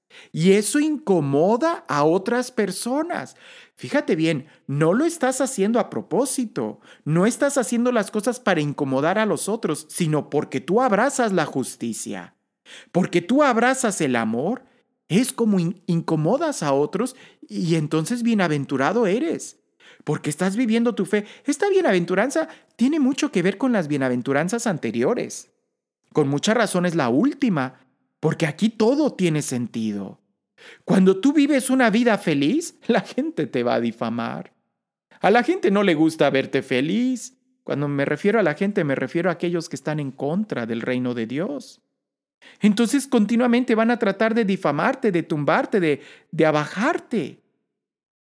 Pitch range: 150-245 Hz